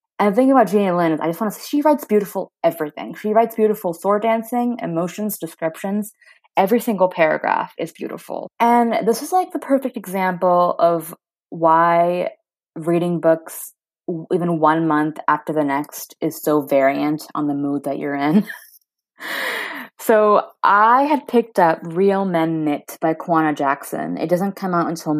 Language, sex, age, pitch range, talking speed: English, female, 20-39, 160-220 Hz, 165 wpm